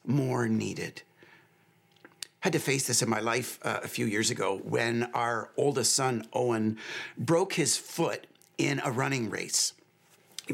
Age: 50-69